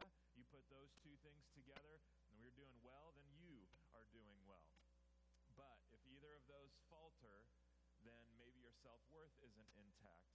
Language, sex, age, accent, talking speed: English, male, 30-49, American, 140 wpm